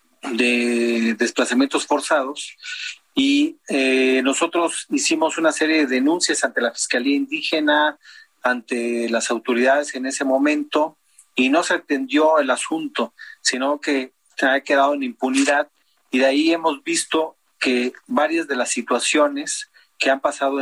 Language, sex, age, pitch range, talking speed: Spanish, male, 40-59, 125-150 Hz, 135 wpm